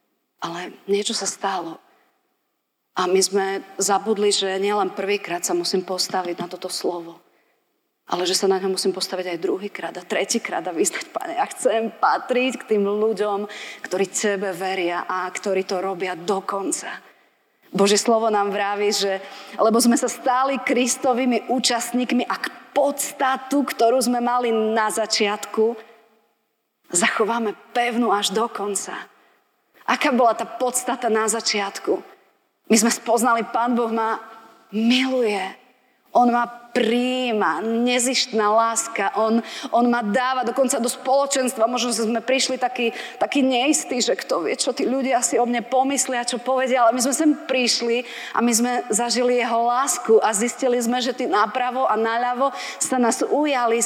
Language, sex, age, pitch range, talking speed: Slovak, female, 30-49, 205-250 Hz, 145 wpm